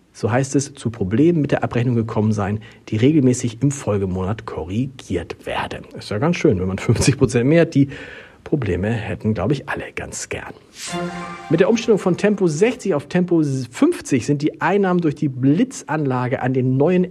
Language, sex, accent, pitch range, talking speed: German, male, German, 120-165 Hz, 180 wpm